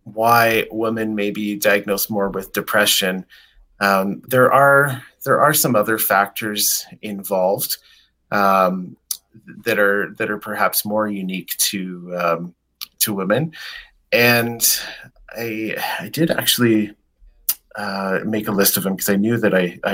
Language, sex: English, male